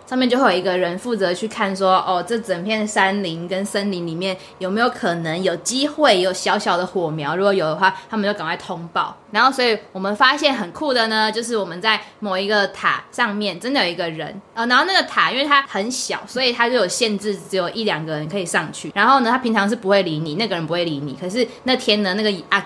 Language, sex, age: Chinese, female, 20-39